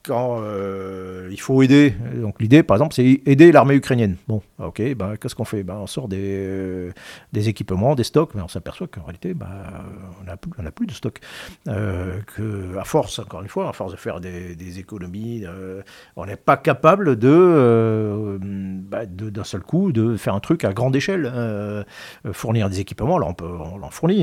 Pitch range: 100-135 Hz